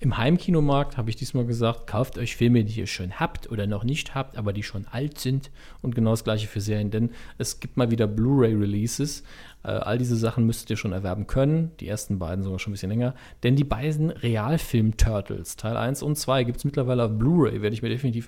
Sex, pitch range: male, 105-130 Hz